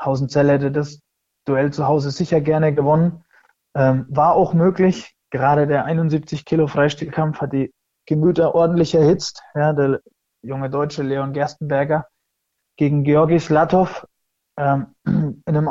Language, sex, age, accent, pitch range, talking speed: German, male, 20-39, German, 140-165 Hz, 135 wpm